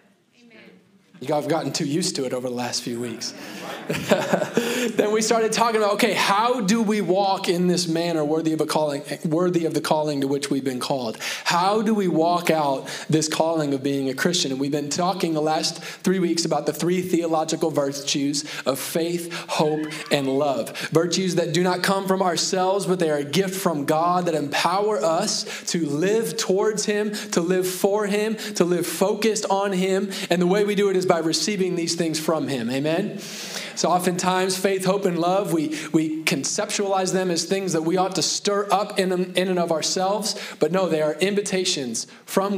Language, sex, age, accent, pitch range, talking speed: English, male, 20-39, American, 155-195 Hz, 190 wpm